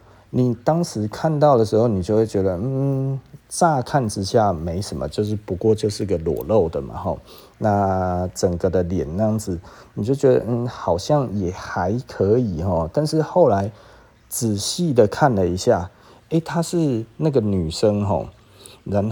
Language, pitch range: Chinese, 95-135 Hz